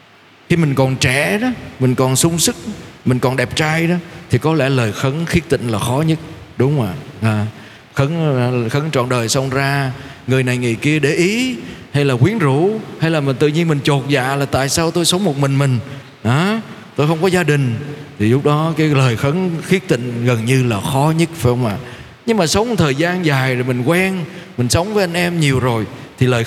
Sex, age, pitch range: male, 20-39, 125-165 Hz